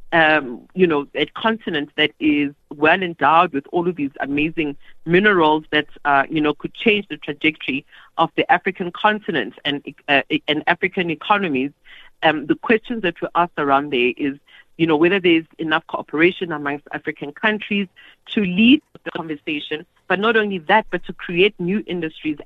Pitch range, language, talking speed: 150-190 Hz, English, 170 wpm